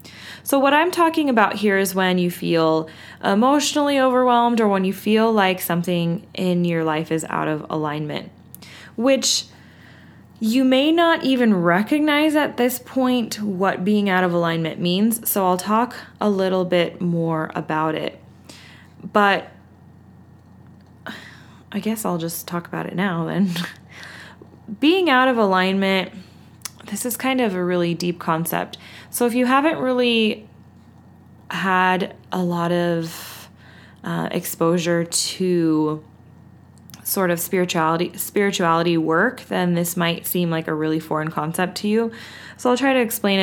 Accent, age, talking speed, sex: American, 20-39, 145 wpm, female